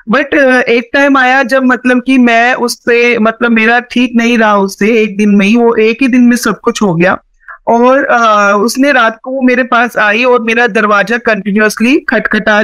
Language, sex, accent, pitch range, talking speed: Hindi, female, native, 230-260 Hz, 200 wpm